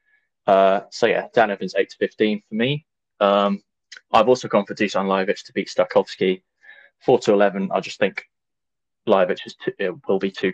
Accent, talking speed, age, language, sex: British, 190 wpm, 10-29, English, male